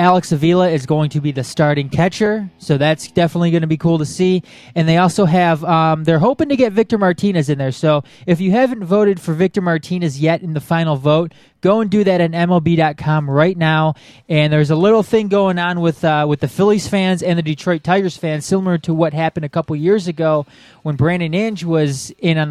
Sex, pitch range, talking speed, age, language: male, 150-175 Hz, 225 wpm, 20-39, English